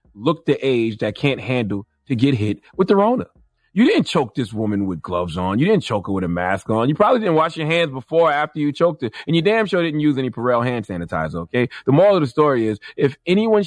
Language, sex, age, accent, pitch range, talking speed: English, male, 30-49, American, 110-150 Hz, 260 wpm